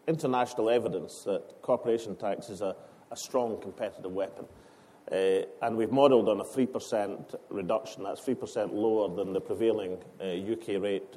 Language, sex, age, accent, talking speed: English, male, 40-59, British, 150 wpm